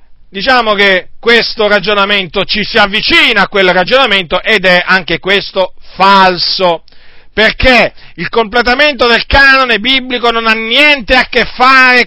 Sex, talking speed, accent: male, 135 wpm, native